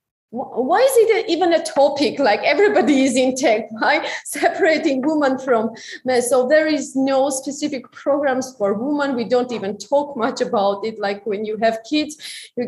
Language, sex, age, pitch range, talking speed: English, female, 20-39, 220-280 Hz, 175 wpm